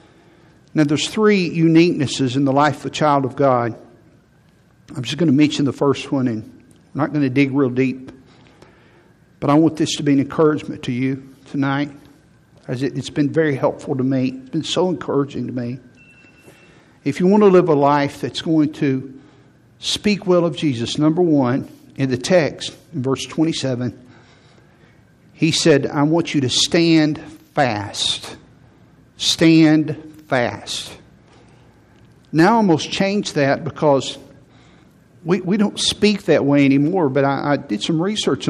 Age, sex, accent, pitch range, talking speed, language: 60-79, male, American, 135-165 Hz, 160 wpm, English